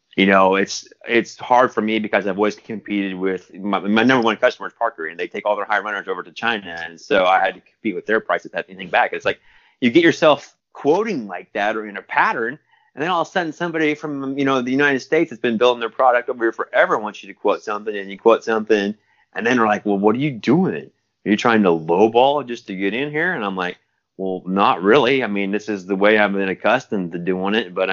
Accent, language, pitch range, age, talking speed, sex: American, English, 95-120 Hz, 30-49, 260 wpm, male